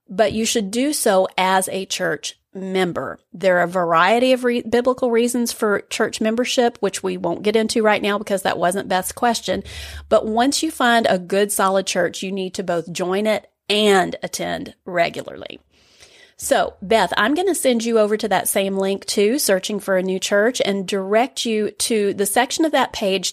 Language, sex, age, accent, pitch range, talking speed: English, female, 30-49, American, 190-235 Hz, 195 wpm